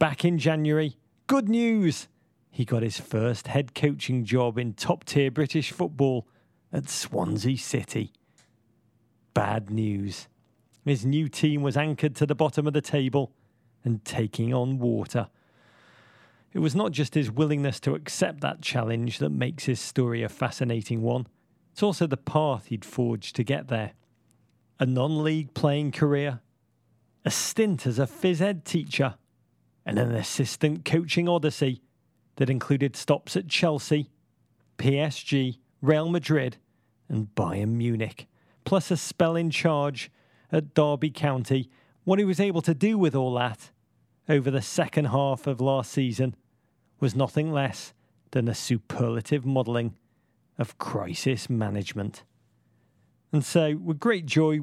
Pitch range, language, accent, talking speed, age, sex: 120-155 Hz, English, British, 140 wpm, 40-59, male